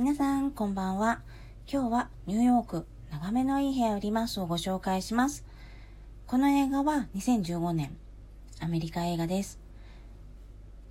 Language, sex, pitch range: Japanese, female, 165-230 Hz